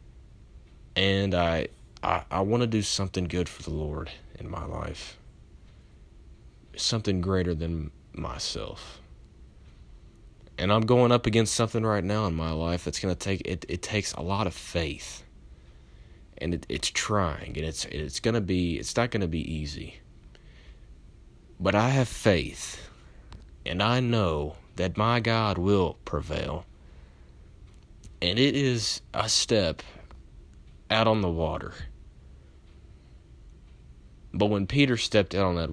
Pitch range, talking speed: 70-95 Hz, 145 wpm